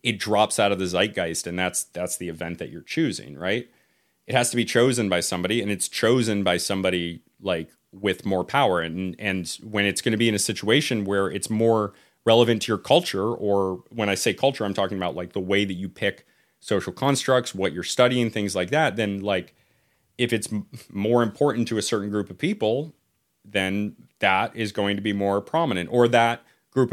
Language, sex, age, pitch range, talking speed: English, male, 30-49, 95-110 Hz, 210 wpm